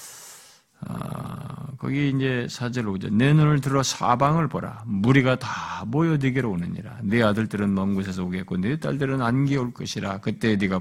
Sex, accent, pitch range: male, native, 100-165 Hz